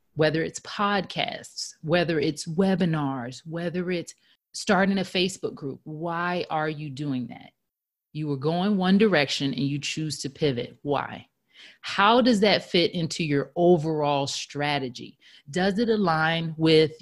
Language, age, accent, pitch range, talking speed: English, 30-49, American, 145-185 Hz, 140 wpm